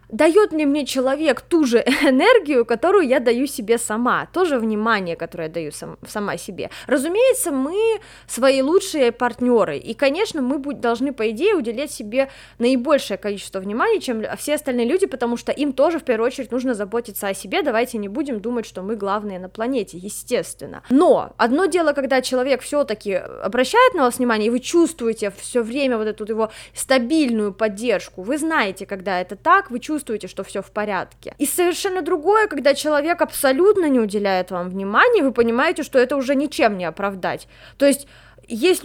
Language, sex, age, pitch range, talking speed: Russian, female, 20-39, 220-295 Hz, 180 wpm